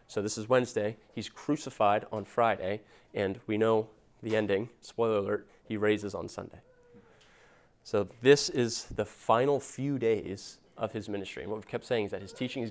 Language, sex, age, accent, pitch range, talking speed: English, male, 30-49, American, 105-120 Hz, 185 wpm